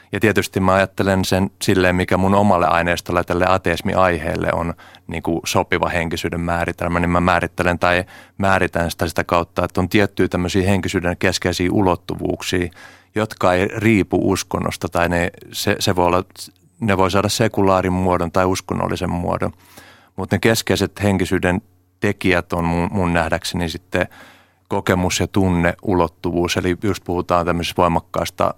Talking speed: 140 wpm